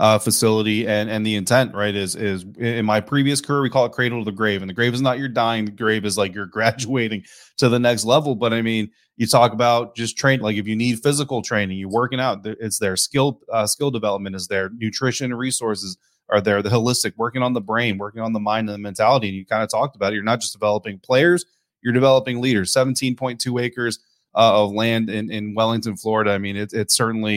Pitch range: 105-125 Hz